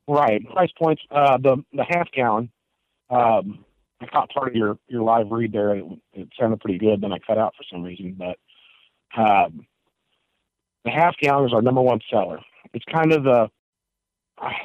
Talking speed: 190 wpm